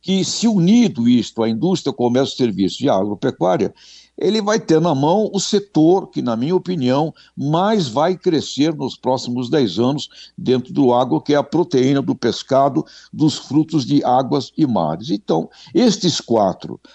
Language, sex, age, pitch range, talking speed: Portuguese, male, 60-79, 115-175 Hz, 165 wpm